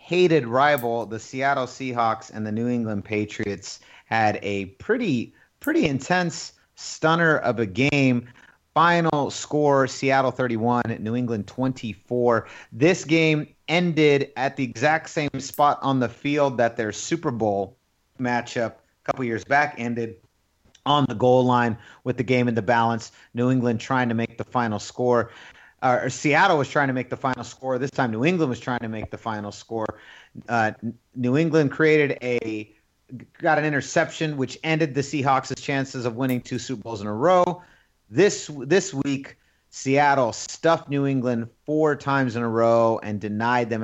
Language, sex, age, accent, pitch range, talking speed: English, male, 30-49, American, 110-145 Hz, 165 wpm